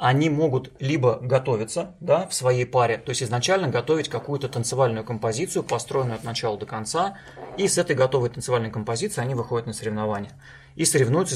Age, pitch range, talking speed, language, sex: 30-49, 120-150 Hz, 170 wpm, Russian, male